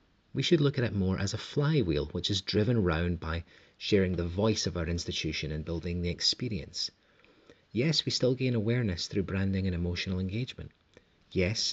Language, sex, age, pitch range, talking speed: English, male, 30-49, 90-115 Hz, 180 wpm